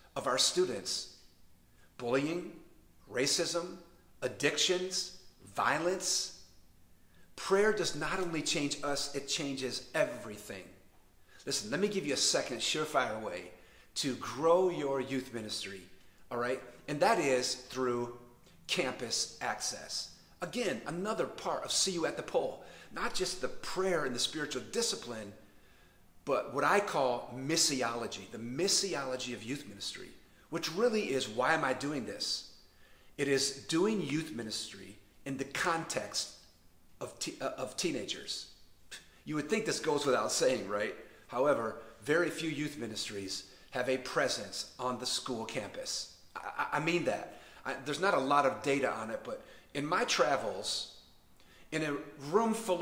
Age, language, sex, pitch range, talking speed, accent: 40-59, English, male, 110-170 Hz, 145 wpm, American